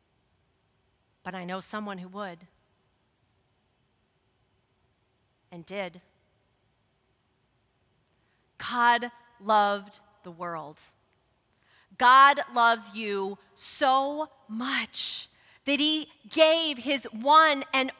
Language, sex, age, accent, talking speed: English, female, 40-59, American, 75 wpm